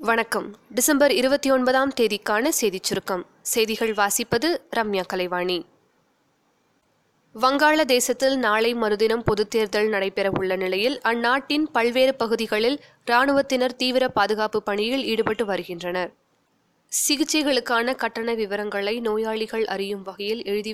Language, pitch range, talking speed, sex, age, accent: Tamil, 205-255 Hz, 100 wpm, female, 20-39, native